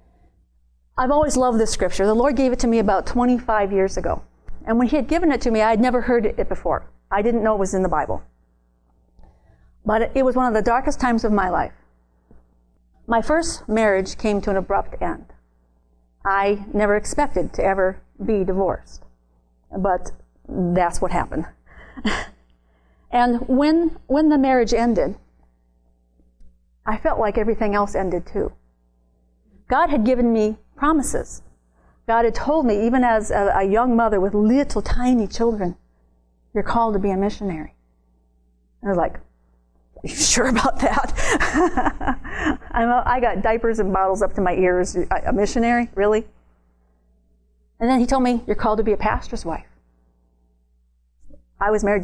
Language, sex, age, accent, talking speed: English, female, 50-69, American, 165 wpm